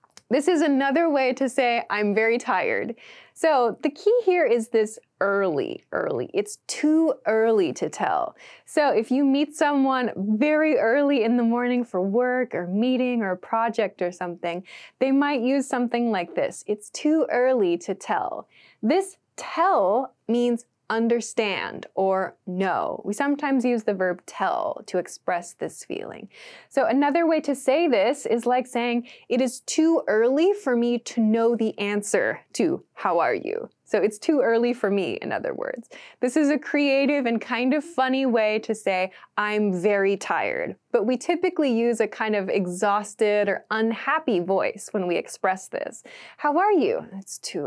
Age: 20-39